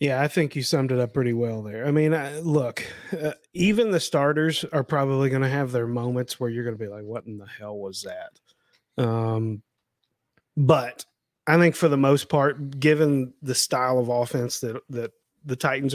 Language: English